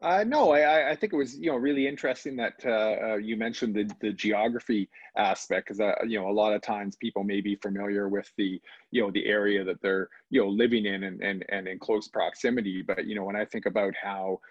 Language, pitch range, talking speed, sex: English, 95-105 Hz, 235 wpm, male